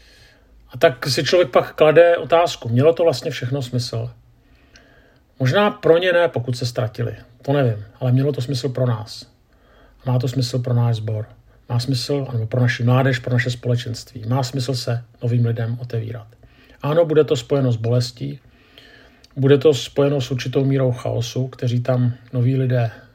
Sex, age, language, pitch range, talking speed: male, 50-69, Czech, 120-135 Hz, 165 wpm